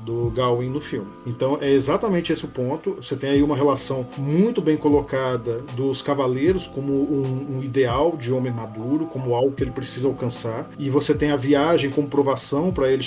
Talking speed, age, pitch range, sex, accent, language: 195 wpm, 40-59, 125-155 Hz, male, Brazilian, Portuguese